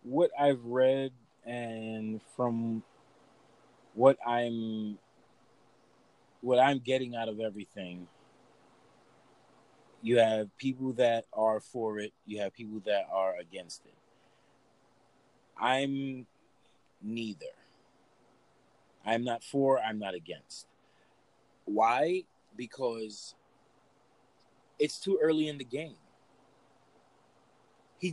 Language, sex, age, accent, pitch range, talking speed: English, male, 30-49, American, 115-150 Hz, 95 wpm